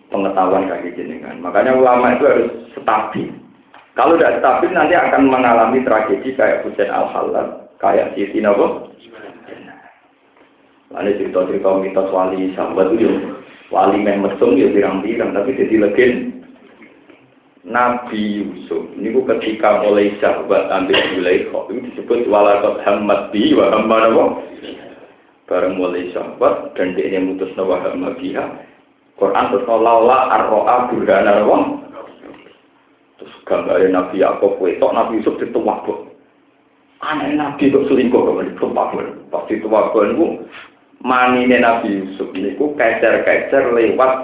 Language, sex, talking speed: Indonesian, male, 110 wpm